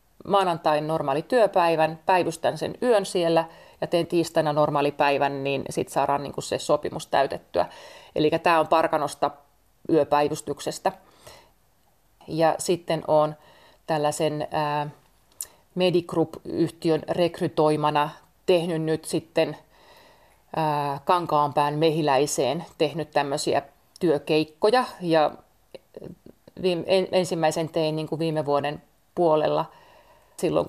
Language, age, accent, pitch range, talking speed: Finnish, 30-49, native, 155-180 Hz, 95 wpm